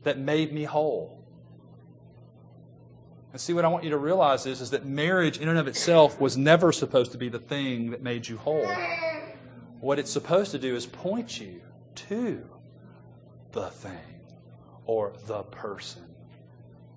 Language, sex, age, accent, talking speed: English, male, 40-59, American, 160 wpm